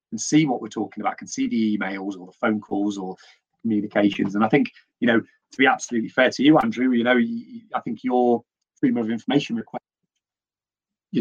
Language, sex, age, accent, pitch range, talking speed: English, male, 30-49, British, 110-135 Hz, 210 wpm